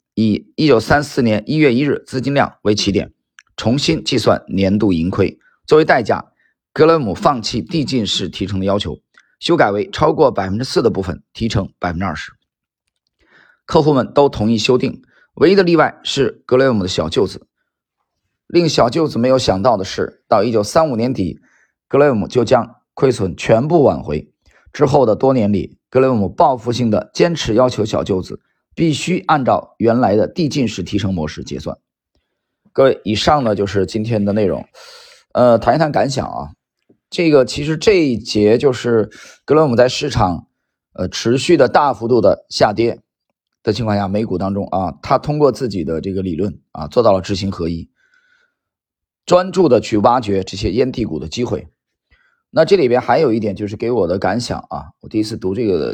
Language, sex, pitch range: Chinese, male, 95-135 Hz